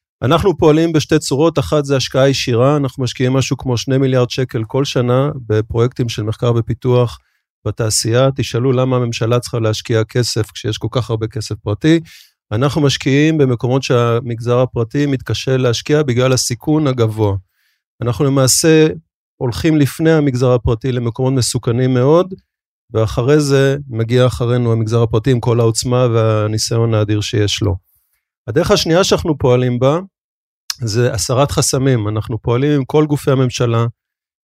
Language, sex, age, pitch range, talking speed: Hebrew, male, 30-49, 115-140 Hz, 140 wpm